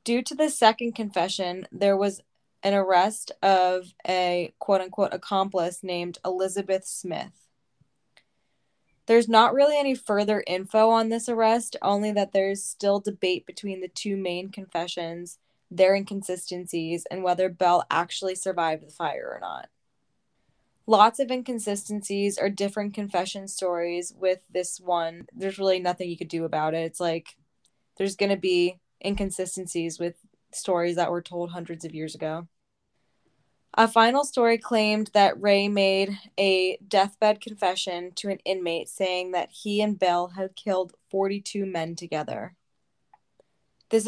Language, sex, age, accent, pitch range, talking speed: English, female, 10-29, American, 180-210 Hz, 140 wpm